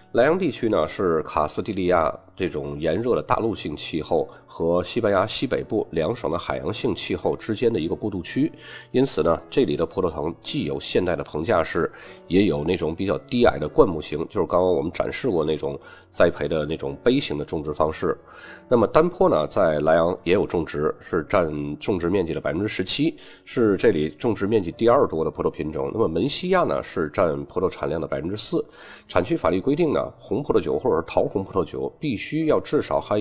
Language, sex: Chinese, male